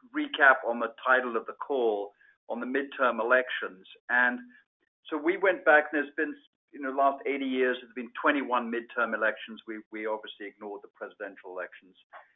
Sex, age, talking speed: male, 50-69, 175 wpm